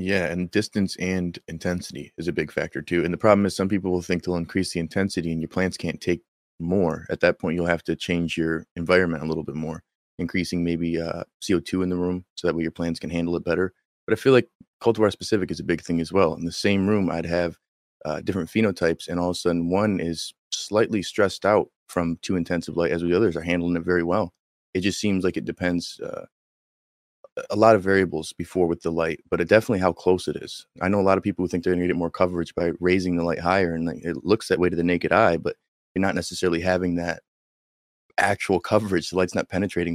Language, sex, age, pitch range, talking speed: English, male, 30-49, 85-95 Hz, 245 wpm